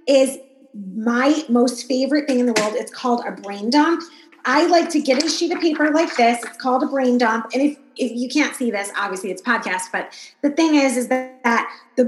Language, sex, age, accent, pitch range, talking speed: English, female, 30-49, American, 225-290 Hz, 230 wpm